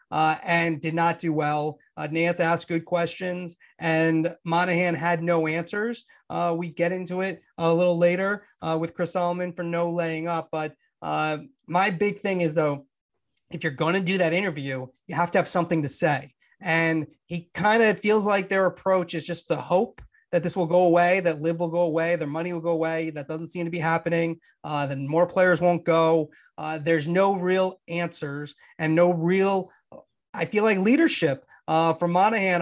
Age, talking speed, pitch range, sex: 30-49, 195 wpm, 155-180 Hz, male